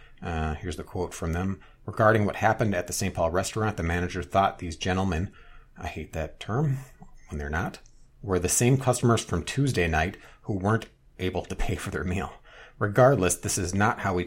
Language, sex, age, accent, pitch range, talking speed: English, male, 40-59, American, 85-110 Hz, 200 wpm